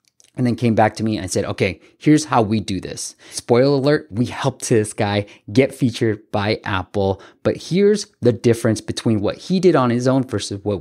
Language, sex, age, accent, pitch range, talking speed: English, male, 30-49, American, 105-130 Hz, 205 wpm